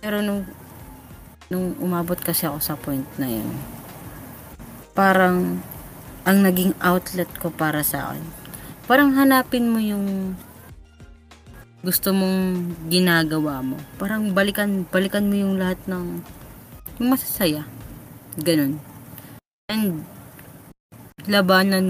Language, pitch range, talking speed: Filipino, 140-185 Hz, 100 wpm